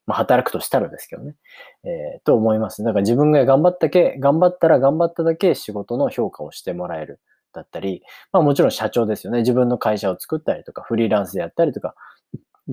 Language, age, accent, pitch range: Japanese, 20-39, native, 105-165 Hz